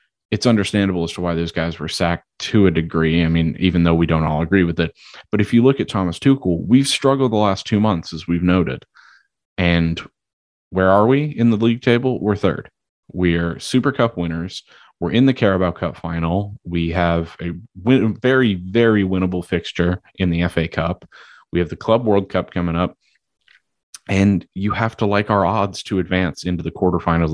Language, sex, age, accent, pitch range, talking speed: English, male, 30-49, American, 85-100 Hz, 195 wpm